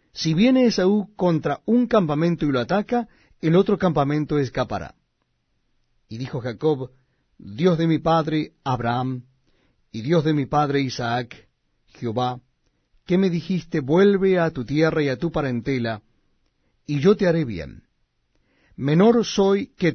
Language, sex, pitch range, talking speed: Spanish, male, 130-180 Hz, 140 wpm